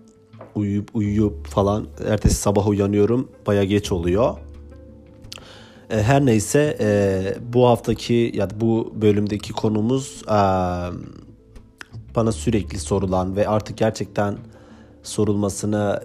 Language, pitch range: Turkish, 100-115 Hz